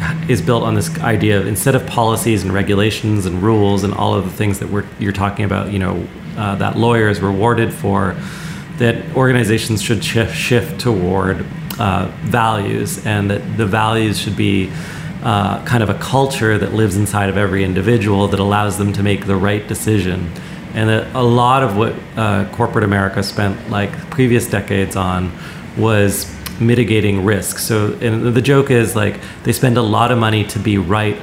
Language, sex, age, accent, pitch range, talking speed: English, male, 30-49, American, 100-120 Hz, 185 wpm